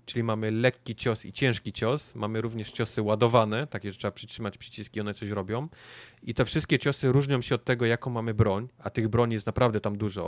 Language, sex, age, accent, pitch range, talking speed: Polish, male, 30-49, native, 110-130 Hz, 215 wpm